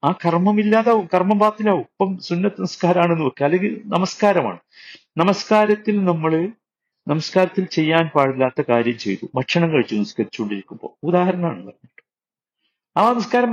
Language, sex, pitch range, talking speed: Malayalam, male, 120-195 Hz, 100 wpm